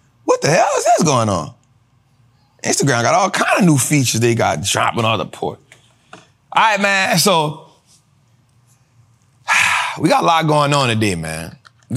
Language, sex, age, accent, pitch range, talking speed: English, male, 30-49, American, 125-205 Hz, 165 wpm